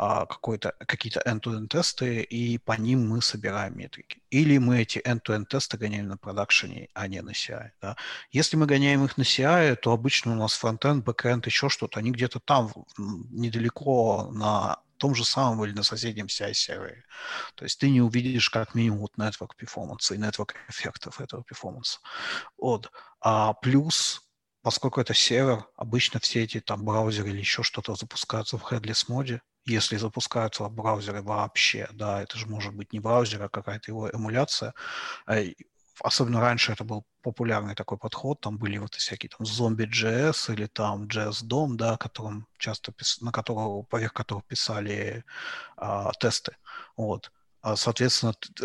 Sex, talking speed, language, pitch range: male, 155 wpm, Ukrainian, 110-125 Hz